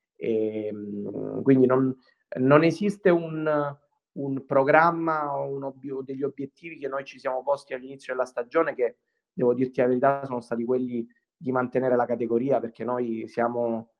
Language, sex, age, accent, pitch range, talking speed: Italian, male, 30-49, native, 120-145 Hz, 150 wpm